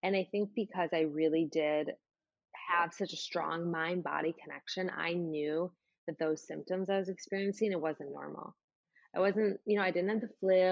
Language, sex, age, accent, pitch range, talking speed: English, female, 20-39, American, 160-195 Hz, 185 wpm